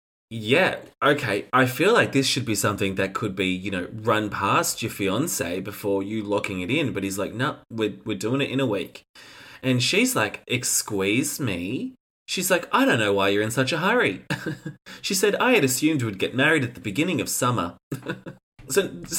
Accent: Australian